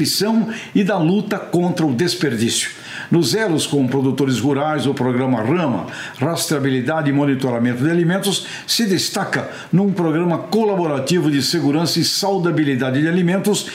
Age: 60-79